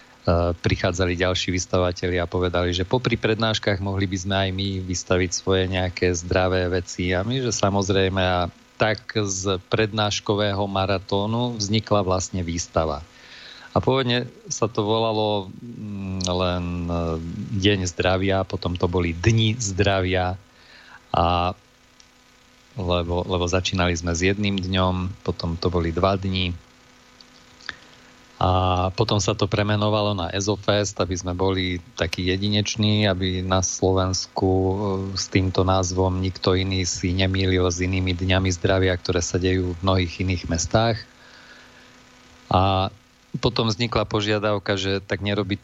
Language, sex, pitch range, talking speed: Slovak, male, 90-105 Hz, 125 wpm